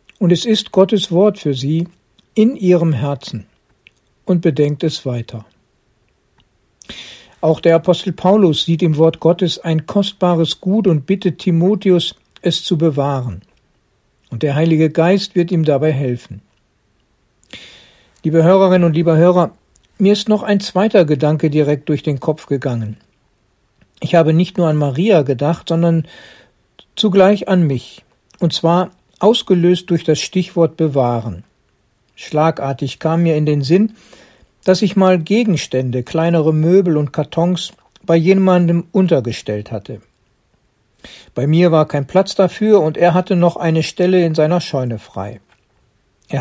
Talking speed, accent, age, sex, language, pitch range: 140 wpm, German, 60-79, male, German, 150-185 Hz